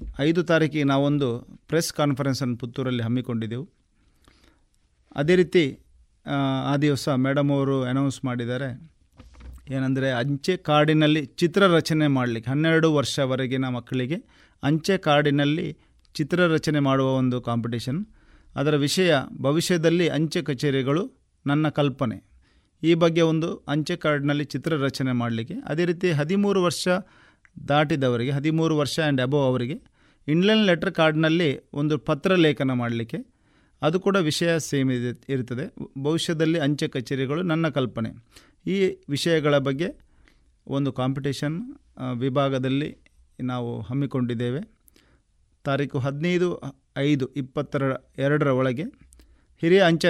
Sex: male